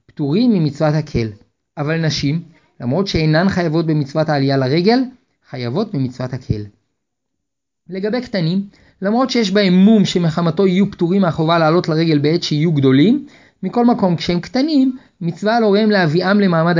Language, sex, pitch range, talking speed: Hebrew, male, 150-200 Hz, 135 wpm